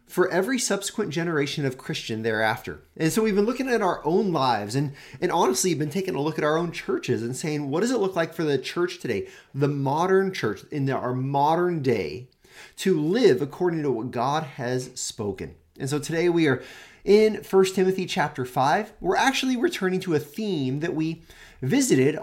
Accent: American